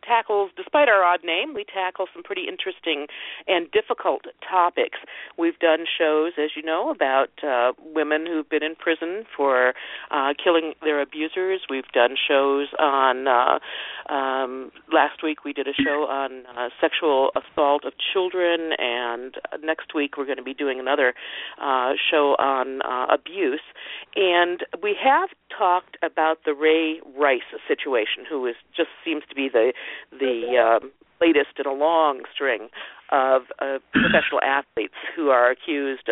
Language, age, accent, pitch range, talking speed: English, 50-69, American, 140-195 Hz, 155 wpm